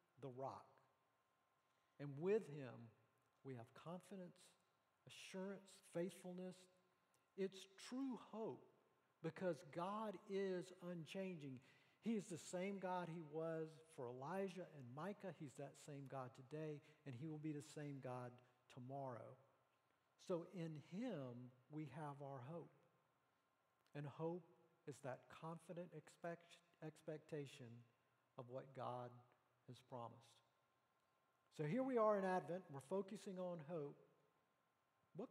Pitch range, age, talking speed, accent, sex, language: 135-185 Hz, 50-69, 115 wpm, American, male, English